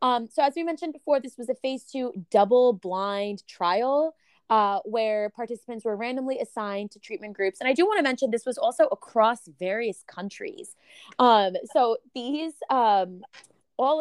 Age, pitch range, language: 20-39, 195-260 Hz, English